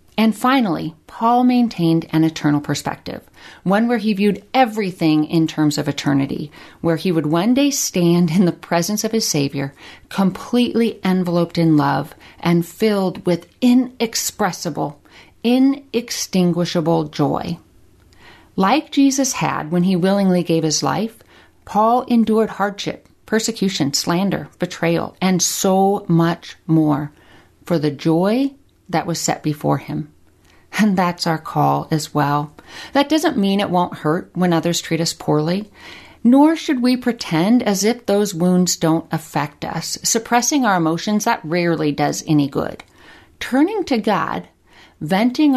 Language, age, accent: English, 40-59, American